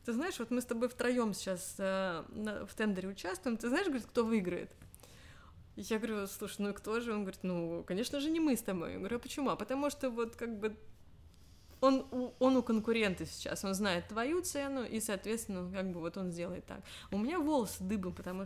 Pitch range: 185-235 Hz